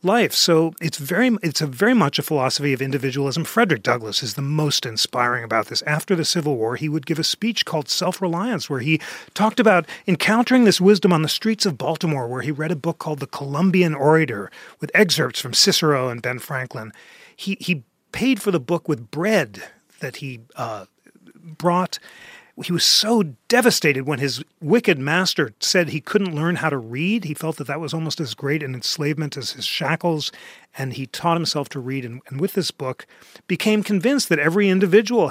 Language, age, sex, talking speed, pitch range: English, 40-59, male, 195 wpm, 135-185 Hz